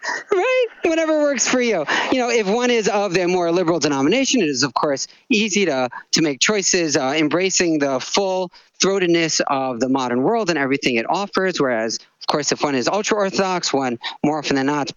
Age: 40-59